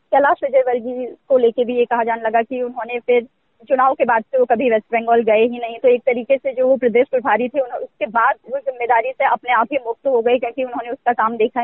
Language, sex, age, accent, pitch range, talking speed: Hindi, female, 20-39, native, 230-280 Hz, 255 wpm